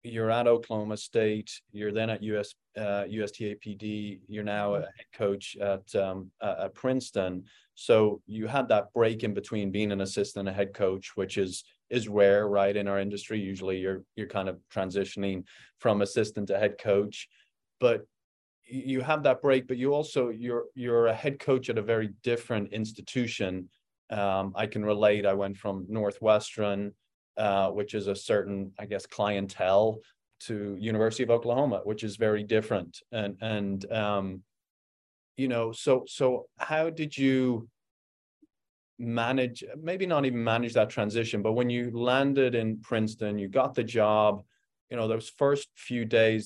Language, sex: English, male